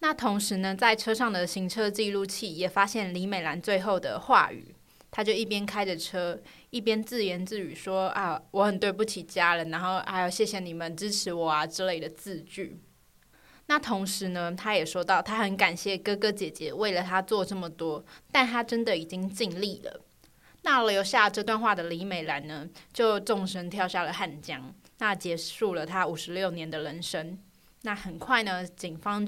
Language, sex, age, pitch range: Chinese, female, 20-39, 180-215 Hz